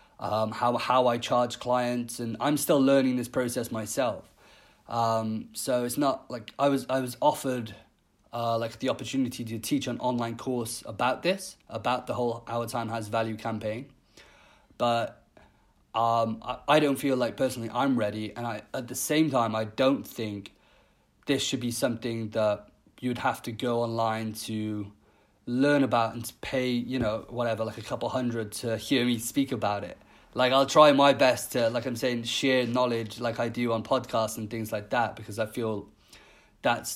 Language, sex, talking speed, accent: English, male, 185 wpm, British